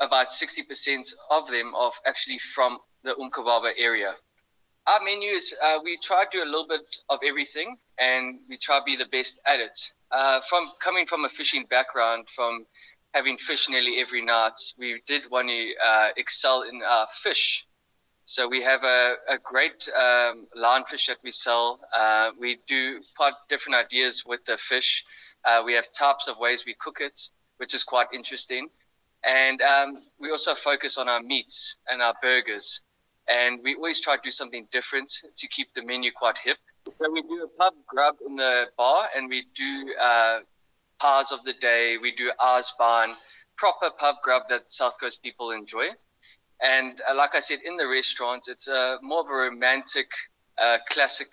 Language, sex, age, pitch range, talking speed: English, male, 20-39, 120-150 Hz, 185 wpm